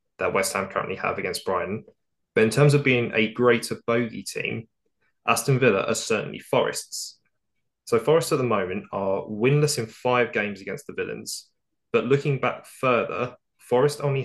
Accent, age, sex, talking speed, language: British, 20-39, male, 170 wpm, English